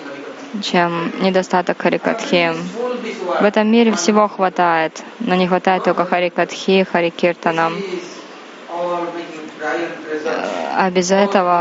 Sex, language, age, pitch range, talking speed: female, Russian, 20-39, 180-205 Hz, 90 wpm